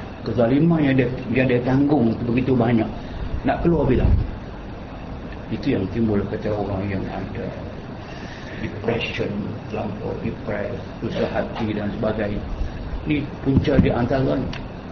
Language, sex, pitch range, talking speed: Malay, male, 115-150 Hz, 115 wpm